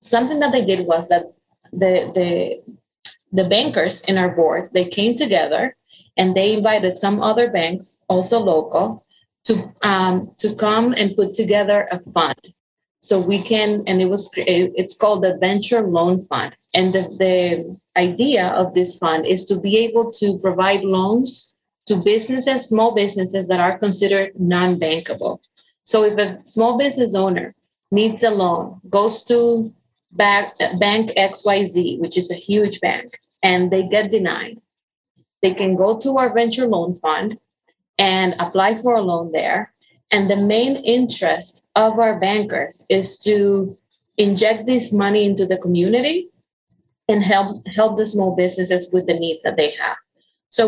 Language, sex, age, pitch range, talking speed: English, female, 30-49, 185-220 Hz, 155 wpm